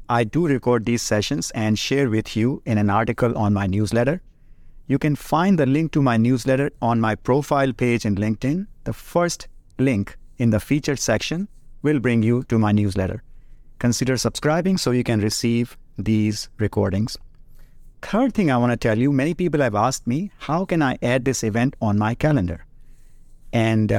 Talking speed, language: 180 wpm, English